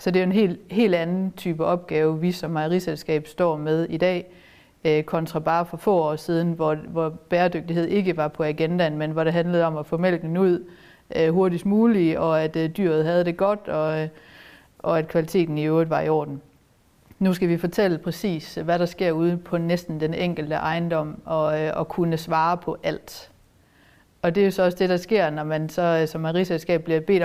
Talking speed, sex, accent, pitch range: 200 wpm, female, native, 160-180 Hz